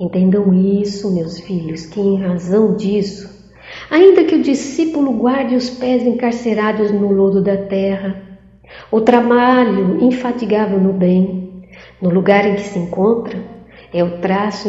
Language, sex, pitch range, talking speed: Portuguese, female, 185-255 Hz, 140 wpm